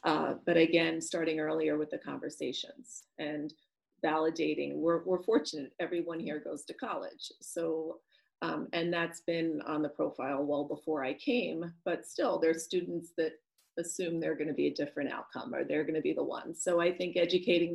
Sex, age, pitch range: female, 30-49, 150-170 Hz